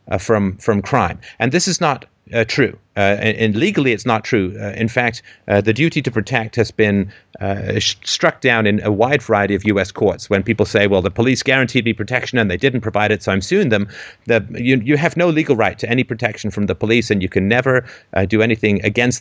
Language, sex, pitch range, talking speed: English, male, 100-125 Hz, 240 wpm